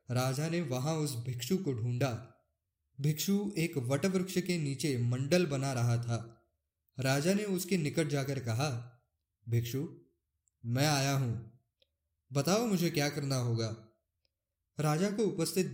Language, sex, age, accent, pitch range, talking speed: Hindi, male, 20-39, native, 120-170 Hz, 130 wpm